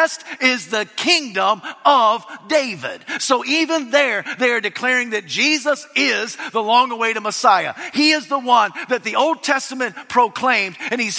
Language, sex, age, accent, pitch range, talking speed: English, male, 50-69, American, 200-295 Hz, 155 wpm